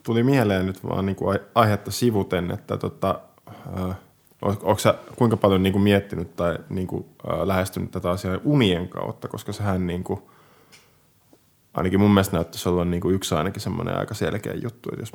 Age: 20-39